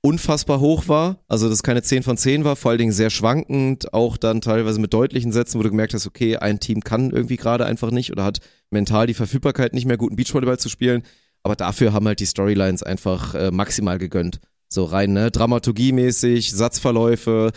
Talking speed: 200 wpm